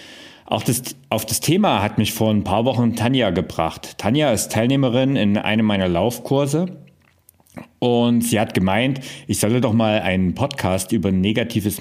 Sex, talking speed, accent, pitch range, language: male, 165 wpm, German, 95-120 Hz, German